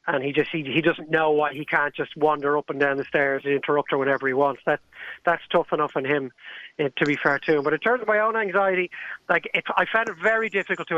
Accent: Irish